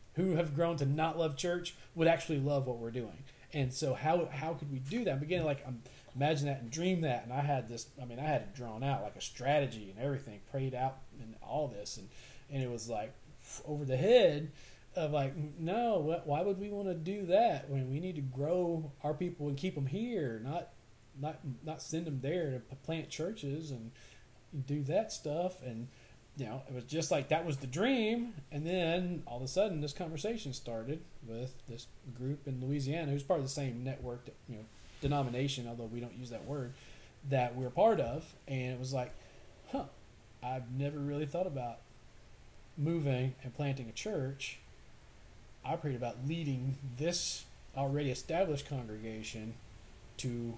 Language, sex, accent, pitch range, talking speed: English, male, American, 125-155 Hz, 195 wpm